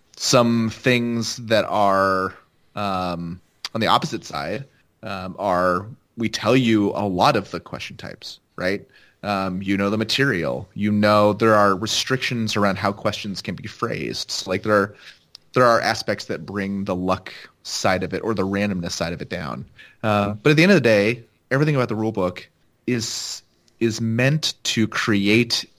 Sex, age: male, 30-49